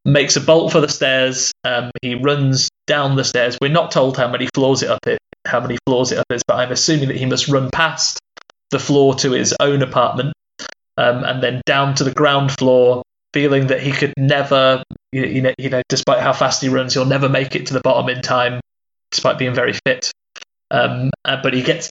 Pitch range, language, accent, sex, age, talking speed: 125-140 Hz, English, British, male, 20-39, 225 wpm